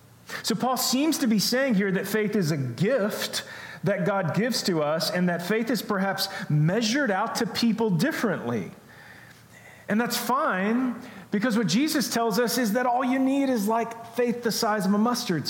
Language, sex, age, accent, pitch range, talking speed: English, male, 40-59, American, 165-220 Hz, 185 wpm